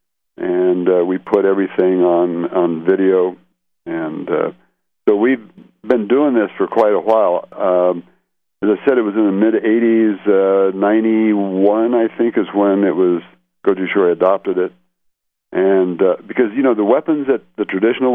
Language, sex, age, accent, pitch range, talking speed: English, male, 60-79, American, 90-110 Hz, 160 wpm